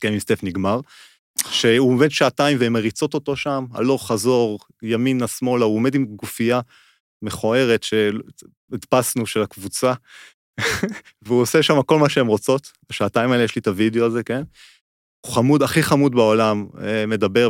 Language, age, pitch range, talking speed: Hebrew, 30-49, 105-130 Hz, 145 wpm